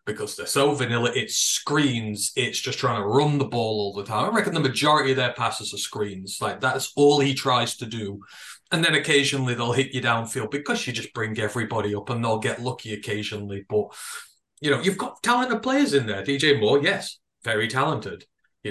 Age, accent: 30-49, British